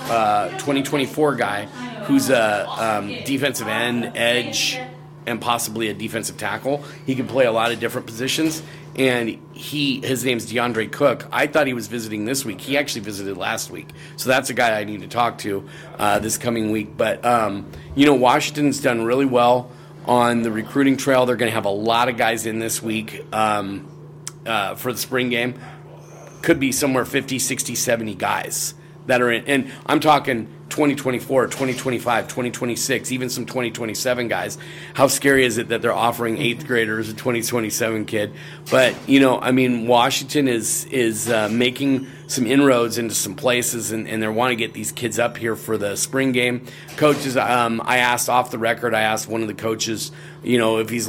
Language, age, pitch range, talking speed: English, 30-49, 115-135 Hz, 185 wpm